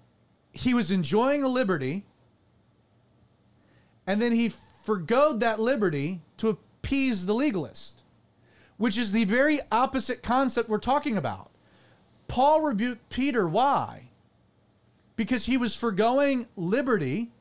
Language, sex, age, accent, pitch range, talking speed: English, male, 30-49, American, 205-260 Hz, 115 wpm